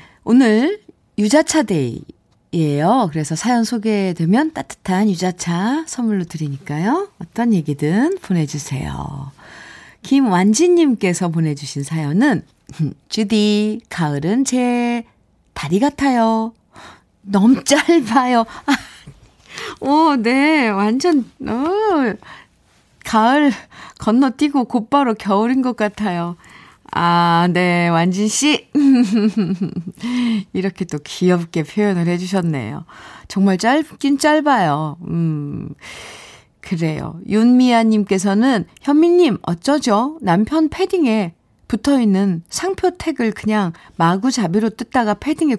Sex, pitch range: female, 175-260 Hz